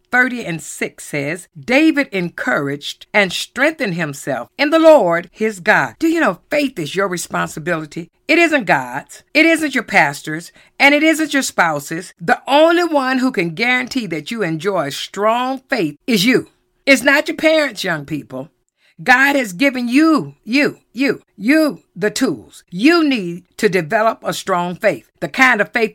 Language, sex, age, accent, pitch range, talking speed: English, female, 50-69, American, 180-280 Hz, 165 wpm